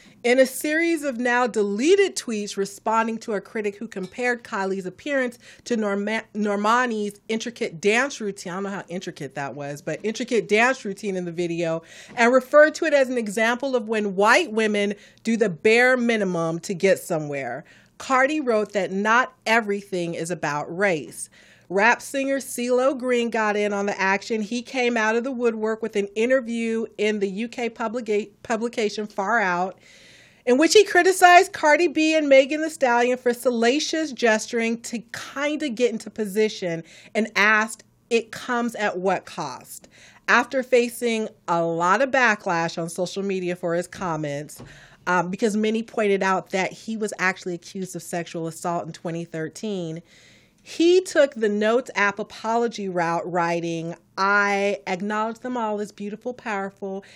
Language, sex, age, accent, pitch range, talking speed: English, female, 40-59, American, 185-240 Hz, 160 wpm